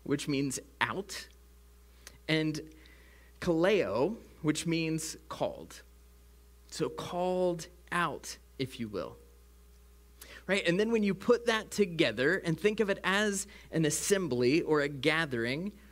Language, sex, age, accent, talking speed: English, male, 30-49, American, 120 wpm